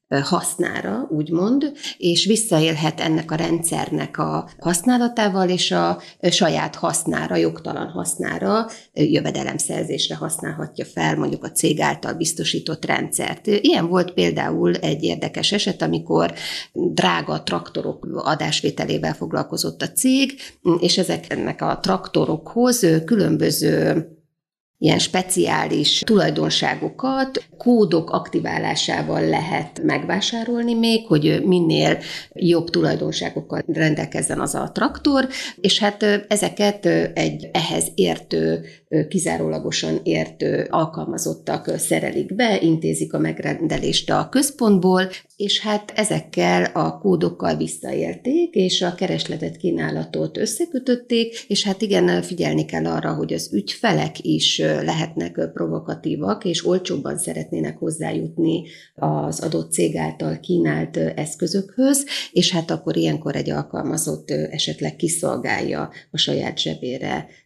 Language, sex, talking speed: Hungarian, female, 105 wpm